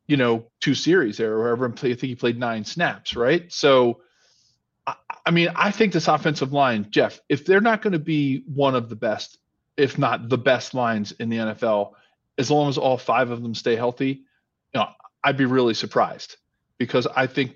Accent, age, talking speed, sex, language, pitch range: American, 40-59, 200 wpm, male, English, 105-130 Hz